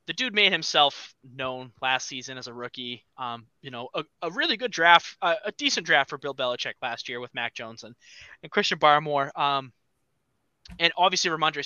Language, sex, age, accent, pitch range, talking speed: English, male, 20-39, American, 130-160 Hz, 195 wpm